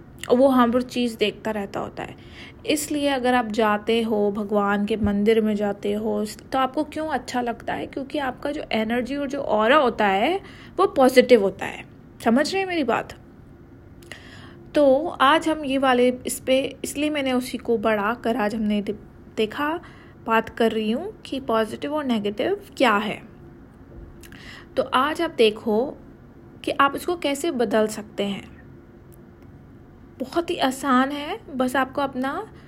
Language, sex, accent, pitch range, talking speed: Hindi, female, native, 215-270 Hz, 160 wpm